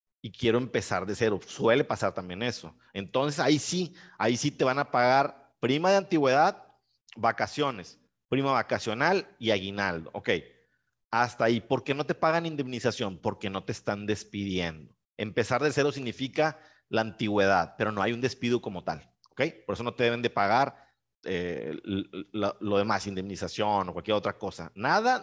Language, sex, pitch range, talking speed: Spanish, male, 100-135 Hz, 170 wpm